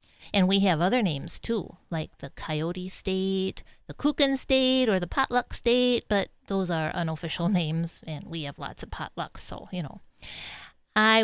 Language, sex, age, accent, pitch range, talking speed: English, female, 40-59, American, 175-240 Hz, 170 wpm